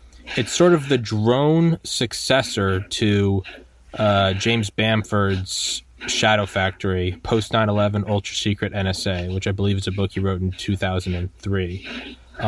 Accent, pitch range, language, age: American, 100-125 Hz, English, 20-39